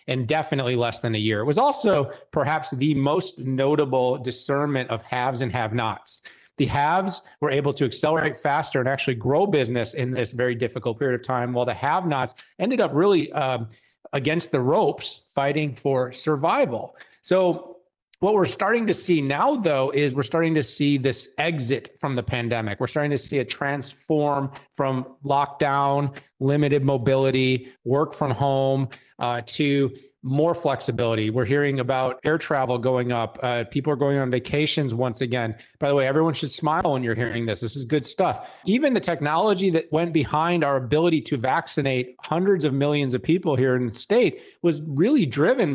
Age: 30-49